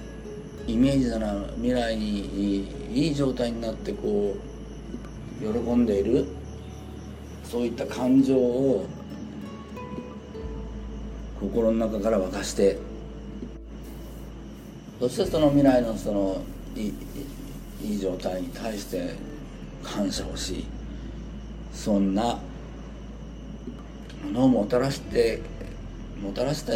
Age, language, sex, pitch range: 50-69, Japanese, male, 75-120 Hz